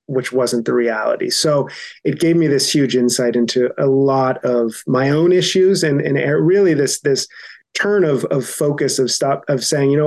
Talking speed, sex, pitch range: 195 wpm, male, 125-150 Hz